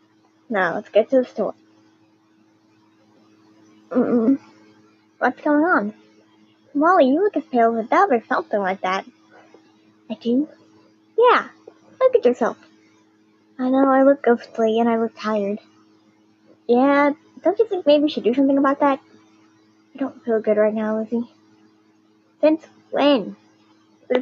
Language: English